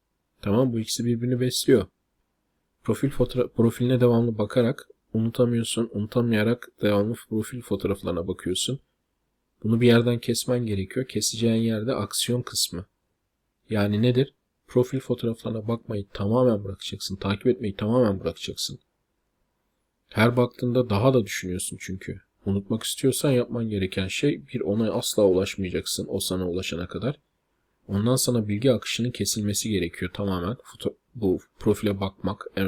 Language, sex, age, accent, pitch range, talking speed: Turkish, male, 40-59, native, 100-125 Hz, 125 wpm